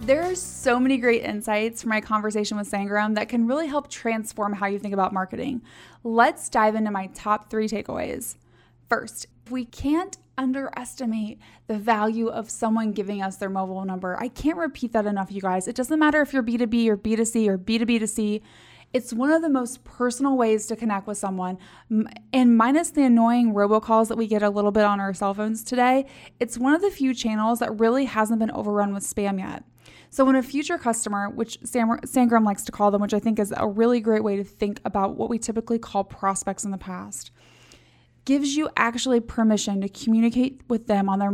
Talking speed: 210 wpm